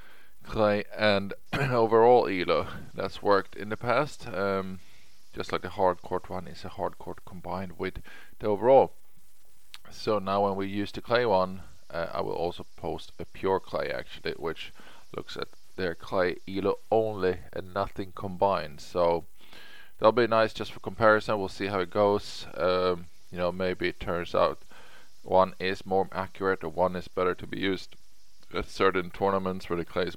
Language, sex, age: English, male, 20-39